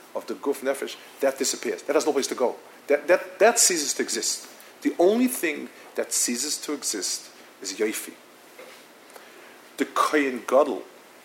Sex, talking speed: male, 160 wpm